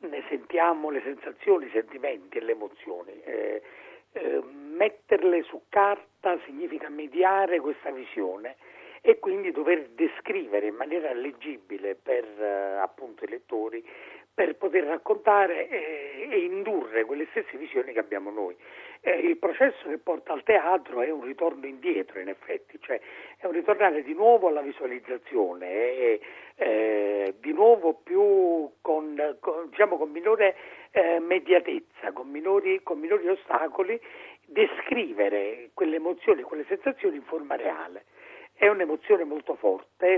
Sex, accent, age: male, native, 50-69